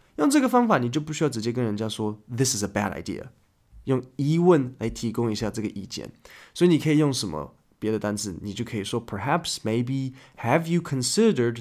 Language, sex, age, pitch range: Chinese, male, 20-39, 110-155 Hz